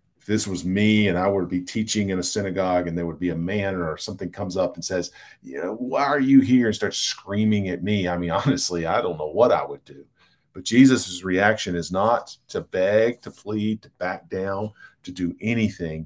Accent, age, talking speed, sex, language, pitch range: American, 40-59, 230 wpm, male, English, 90-115 Hz